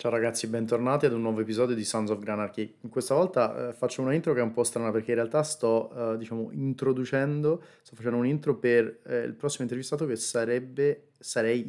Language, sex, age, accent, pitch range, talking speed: Italian, male, 20-39, native, 110-125 Hz, 210 wpm